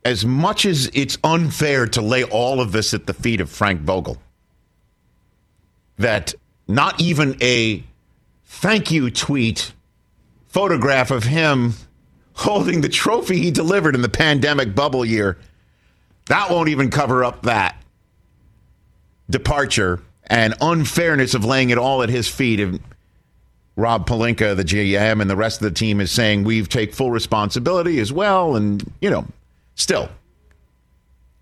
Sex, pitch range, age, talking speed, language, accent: male, 100-155 Hz, 50-69, 140 wpm, English, American